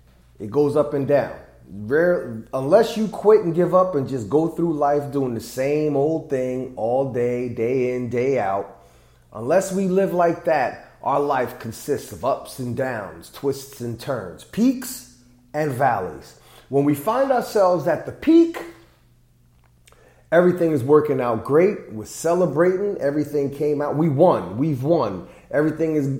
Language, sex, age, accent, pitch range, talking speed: English, male, 30-49, American, 120-170 Hz, 155 wpm